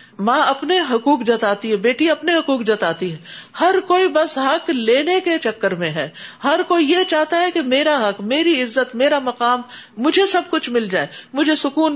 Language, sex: Urdu, female